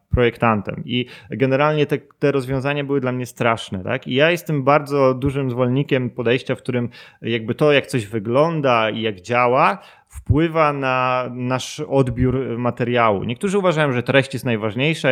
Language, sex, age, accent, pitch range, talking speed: Polish, male, 30-49, native, 120-145 Hz, 155 wpm